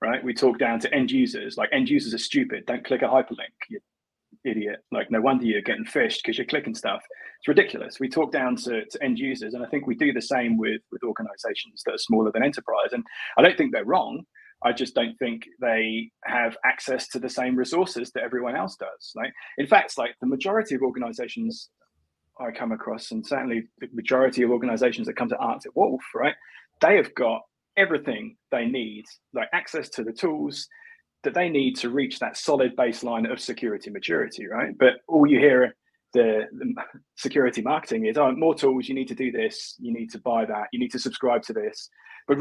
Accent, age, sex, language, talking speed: British, 30-49, male, English, 210 wpm